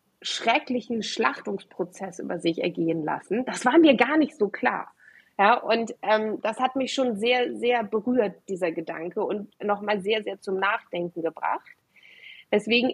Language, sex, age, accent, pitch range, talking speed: German, female, 30-49, German, 190-250 Hz, 155 wpm